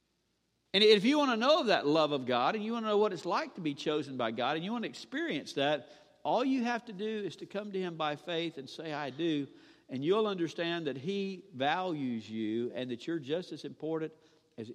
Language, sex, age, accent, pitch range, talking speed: English, male, 50-69, American, 145-235 Hz, 240 wpm